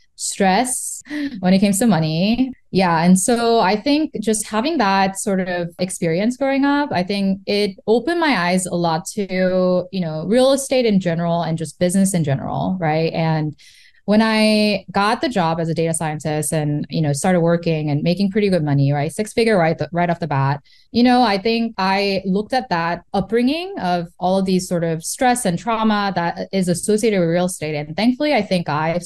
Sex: female